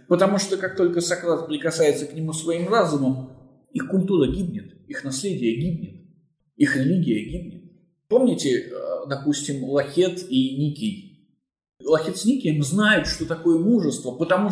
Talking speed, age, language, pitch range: 130 wpm, 20-39, Russian, 140-195 Hz